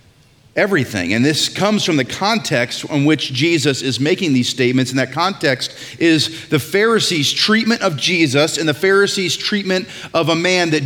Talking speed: 170 wpm